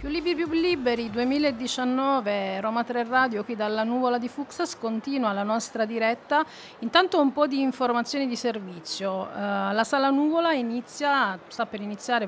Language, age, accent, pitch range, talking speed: Italian, 40-59, native, 210-250 Hz, 155 wpm